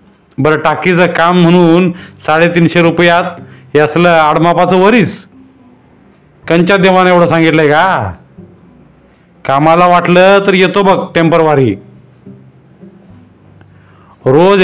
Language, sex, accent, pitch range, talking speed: Marathi, male, native, 140-180 Hz, 85 wpm